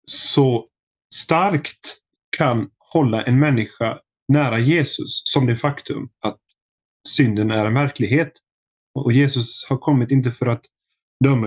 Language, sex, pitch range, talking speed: Swedish, male, 115-140 Hz, 125 wpm